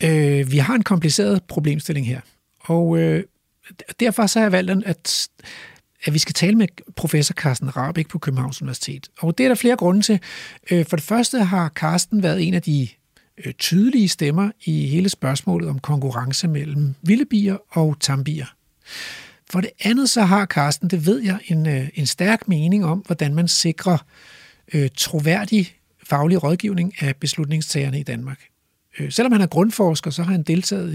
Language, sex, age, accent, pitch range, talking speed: Danish, male, 60-79, native, 150-195 Hz, 155 wpm